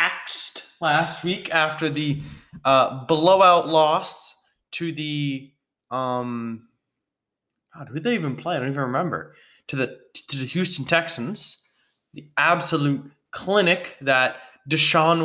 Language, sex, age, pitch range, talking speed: English, male, 20-39, 145-210 Hz, 120 wpm